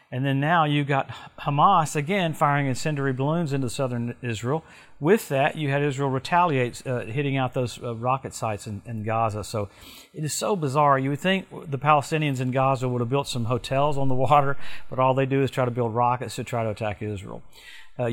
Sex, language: male, English